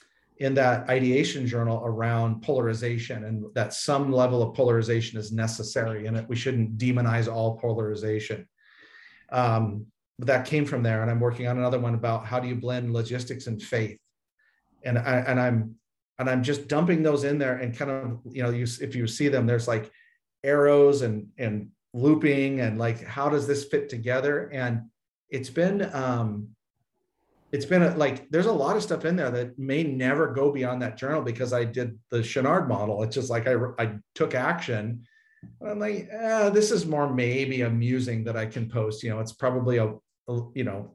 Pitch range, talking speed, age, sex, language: 115-140 Hz, 190 wpm, 40-59, male, English